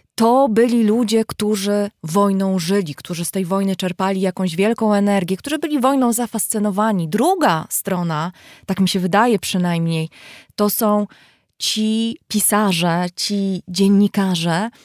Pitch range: 185-215 Hz